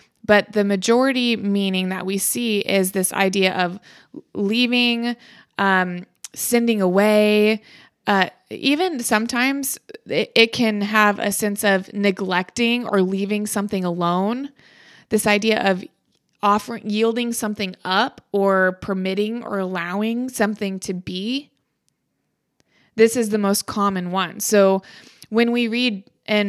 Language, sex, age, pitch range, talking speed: English, female, 20-39, 190-220 Hz, 120 wpm